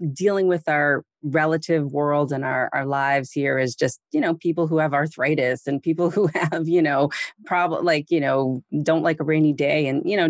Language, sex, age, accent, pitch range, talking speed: English, female, 30-49, American, 140-185 Hz, 210 wpm